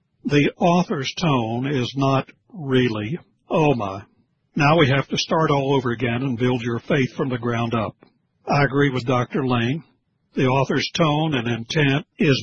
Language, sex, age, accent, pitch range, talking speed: English, male, 60-79, American, 125-155 Hz, 170 wpm